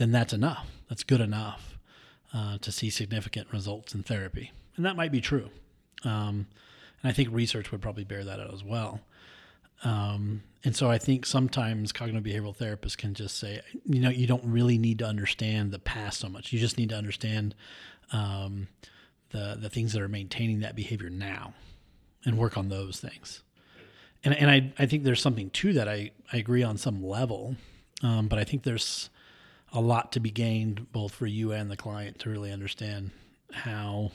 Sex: male